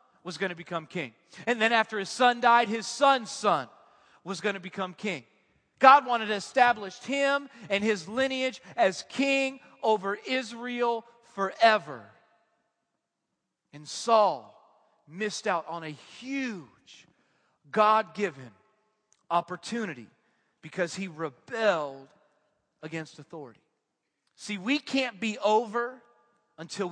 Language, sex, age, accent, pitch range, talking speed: English, male, 40-59, American, 175-245 Hz, 120 wpm